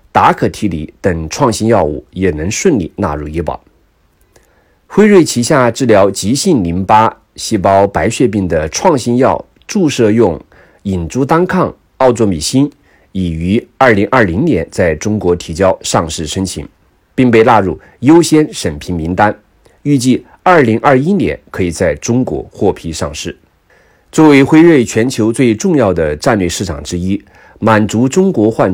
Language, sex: Chinese, male